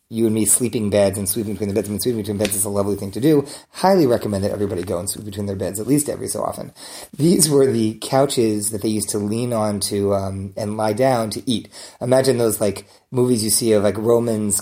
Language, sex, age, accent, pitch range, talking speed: English, male, 30-49, American, 105-130 Hz, 260 wpm